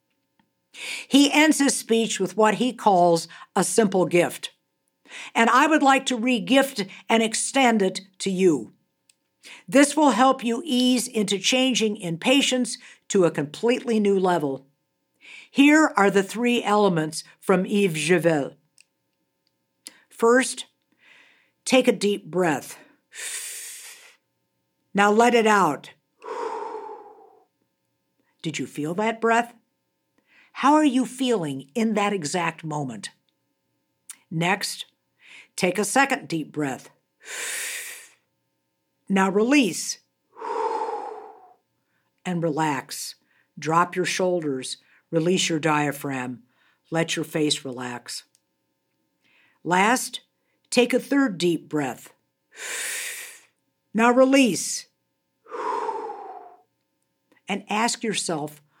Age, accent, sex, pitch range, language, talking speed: 60-79, American, female, 165-260 Hz, English, 100 wpm